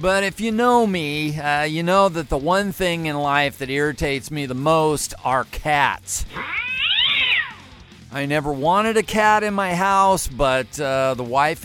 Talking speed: 170 wpm